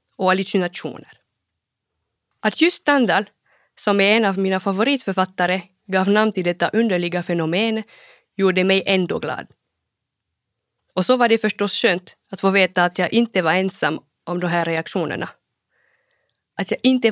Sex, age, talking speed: female, 20-39, 145 wpm